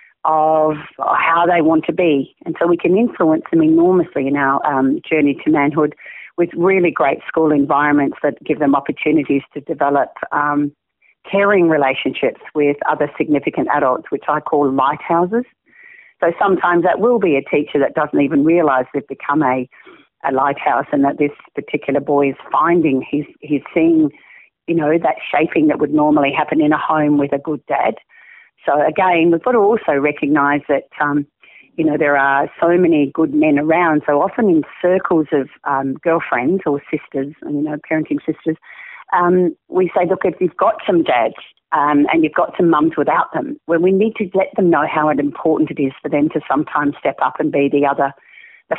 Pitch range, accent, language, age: 145-175 Hz, Australian, English, 40-59